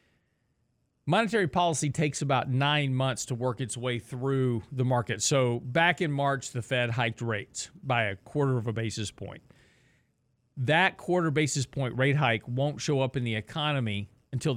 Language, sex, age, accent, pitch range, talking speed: English, male, 40-59, American, 120-150 Hz, 170 wpm